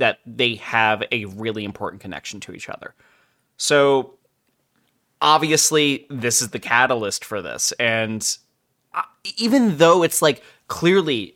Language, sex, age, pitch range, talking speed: English, male, 20-39, 115-145 Hz, 125 wpm